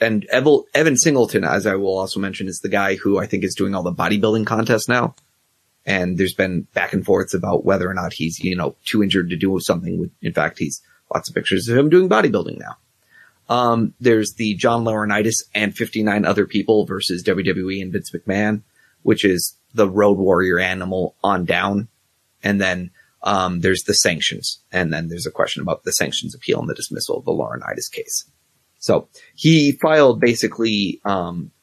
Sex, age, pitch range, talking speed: male, 30-49, 95-115 Hz, 190 wpm